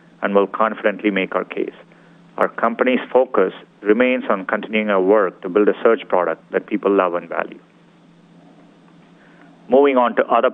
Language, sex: English, male